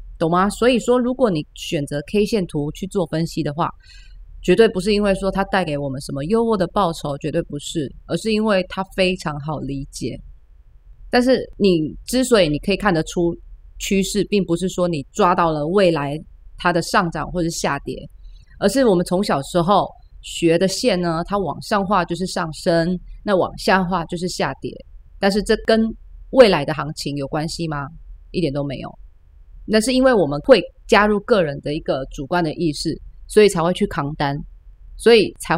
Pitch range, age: 150-200 Hz, 30-49